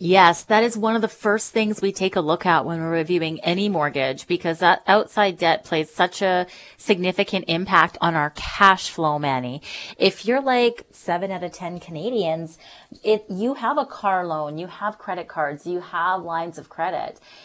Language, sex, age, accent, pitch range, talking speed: English, female, 30-49, American, 160-200 Hz, 185 wpm